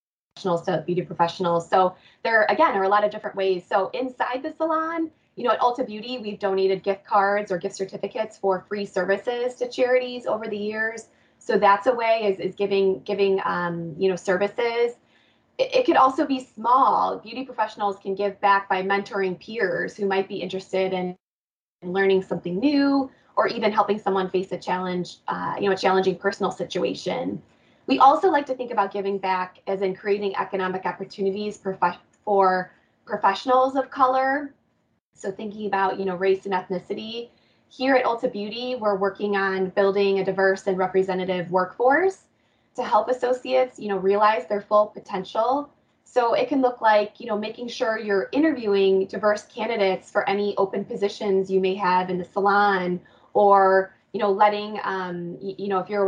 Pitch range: 190-225 Hz